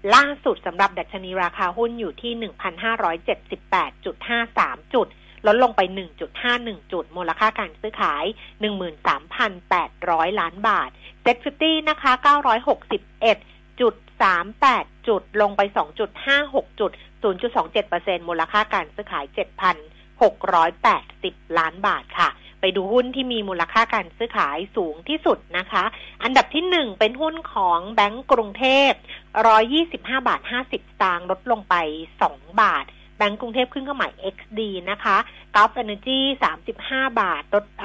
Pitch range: 190-250 Hz